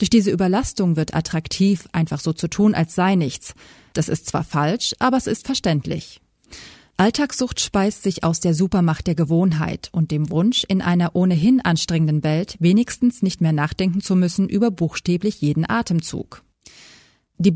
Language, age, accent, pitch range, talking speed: German, 30-49, German, 165-205 Hz, 160 wpm